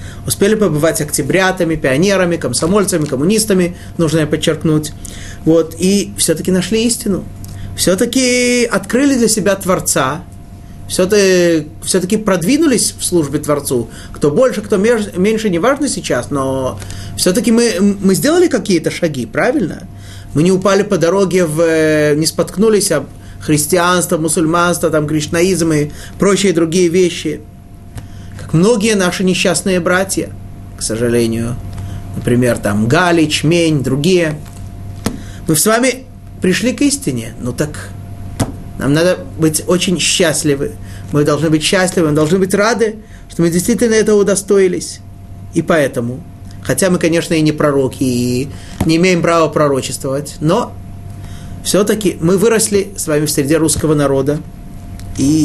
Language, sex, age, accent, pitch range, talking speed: Russian, male, 30-49, native, 120-190 Hz, 130 wpm